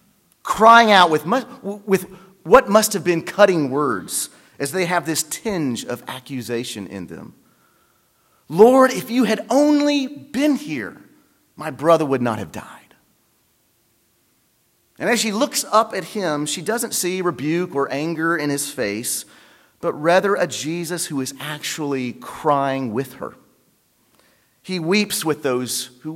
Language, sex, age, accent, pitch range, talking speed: English, male, 40-59, American, 135-205 Hz, 145 wpm